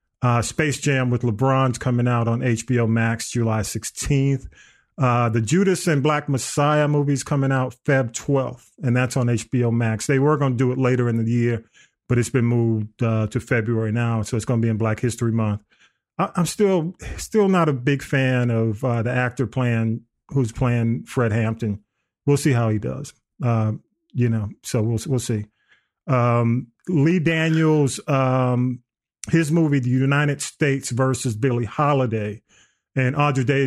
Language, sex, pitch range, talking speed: English, male, 120-140 Hz, 175 wpm